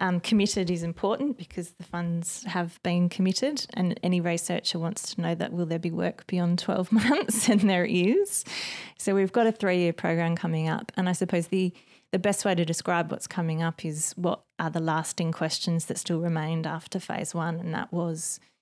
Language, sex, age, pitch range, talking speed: English, female, 20-39, 165-195 Hz, 200 wpm